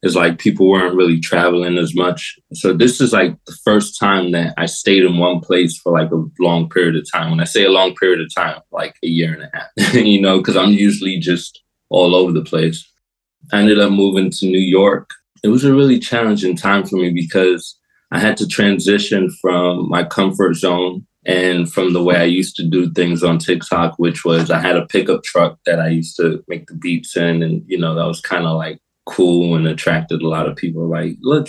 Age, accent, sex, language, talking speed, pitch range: 20-39, American, male, English, 225 wpm, 85-100 Hz